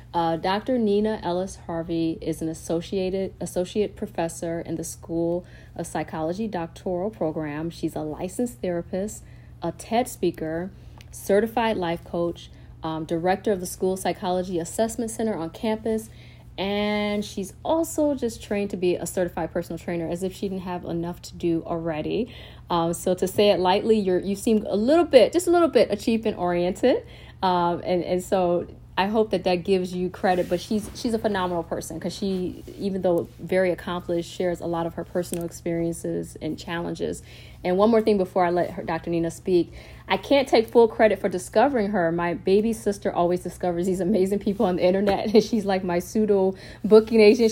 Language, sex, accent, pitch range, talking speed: English, female, American, 170-210 Hz, 180 wpm